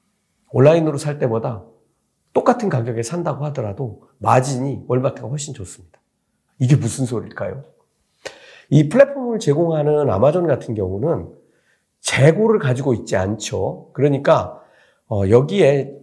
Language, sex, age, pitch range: Korean, male, 40-59, 120-175 Hz